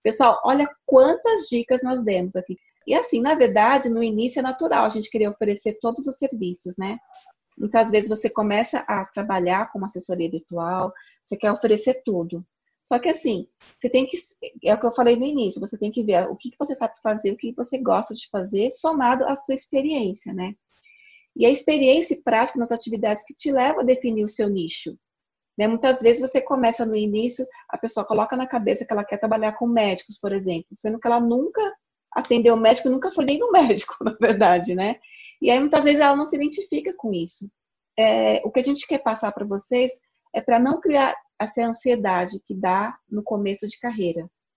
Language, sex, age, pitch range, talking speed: Portuguese, female, 30-49, 210-265 Hz, 200 wpm